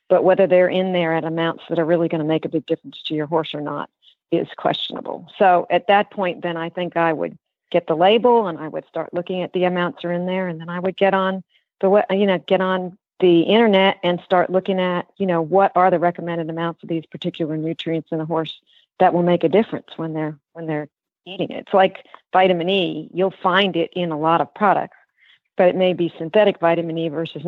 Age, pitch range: 50-69, 165-190 Hz